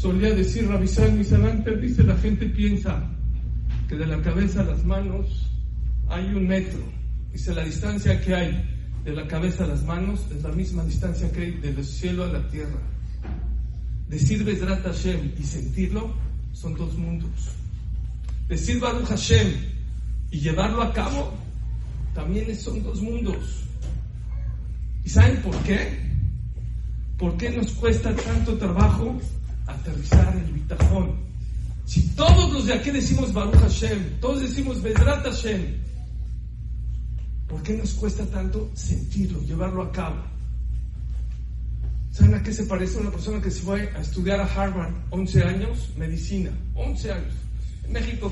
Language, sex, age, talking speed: English, male, 50-69, 145 wpm